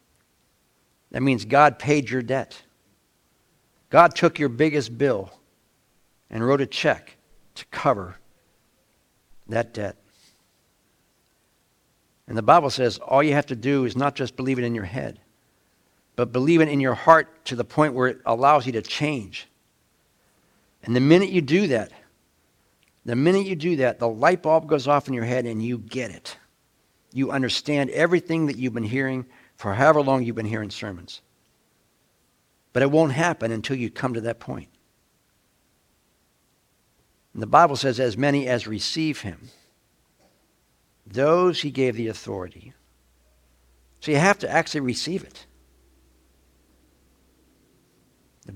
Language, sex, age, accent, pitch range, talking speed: English, male, 60-79, American, 110-145 Hz, 145 wpm